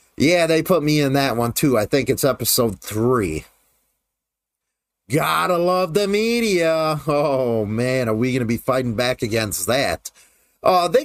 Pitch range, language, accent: 130-190 Hz, English, American